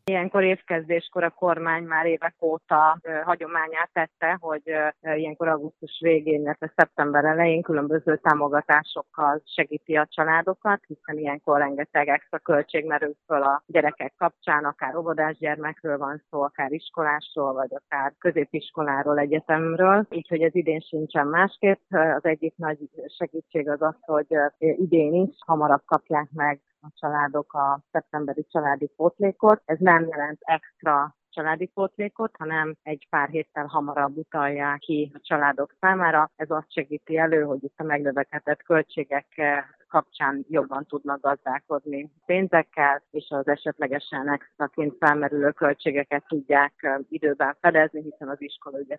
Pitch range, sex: 145-160 Hz, female